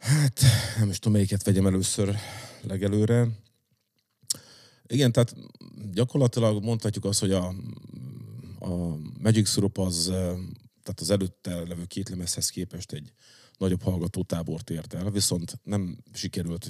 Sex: male